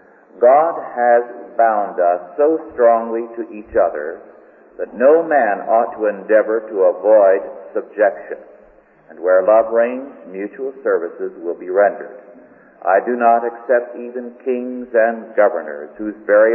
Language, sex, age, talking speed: English, male, 50-69, 135 wpm